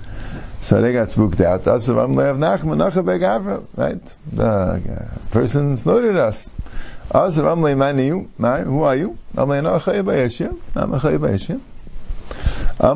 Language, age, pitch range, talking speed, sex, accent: English, 50-69, 105-140 Hz, 140 wpm, male, American